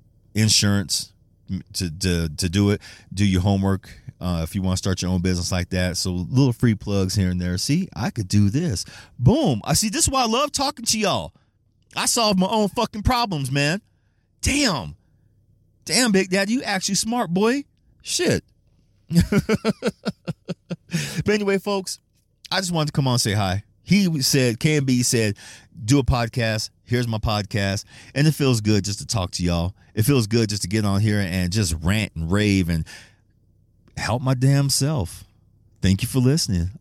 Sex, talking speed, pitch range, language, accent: male, 185 wpm, 95-140 Hz, English, American